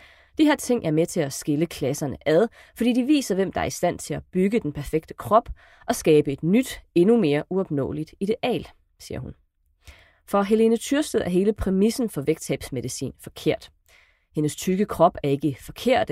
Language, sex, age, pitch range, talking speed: Danish, female, 30-49, 145-215 Hz, 180 wpm